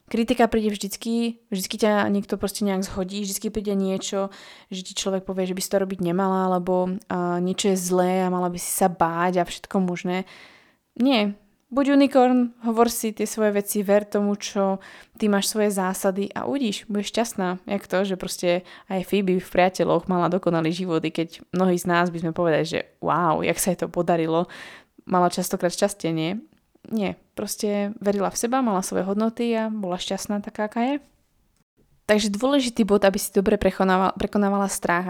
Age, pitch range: 20-39, 185-210 Hz